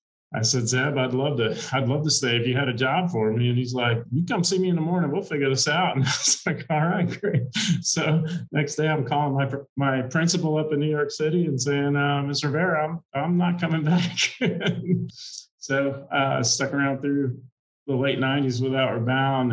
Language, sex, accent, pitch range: English, male, American, 120-150 Hz